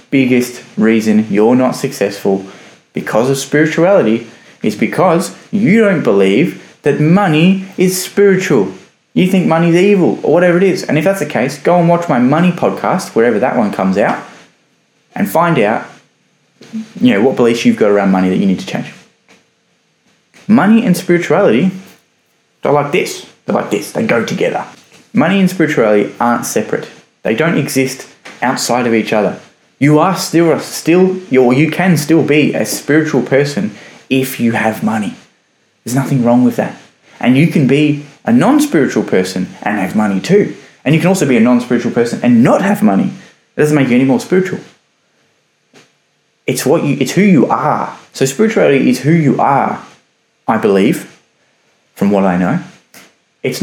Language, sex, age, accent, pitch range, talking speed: English, male, 10-29, Australian, 120-185 Hz, 170 wpm